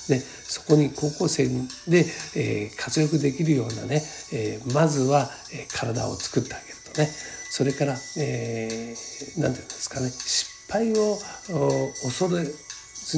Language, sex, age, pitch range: Japanese, male, 60-79, 120-155 Hz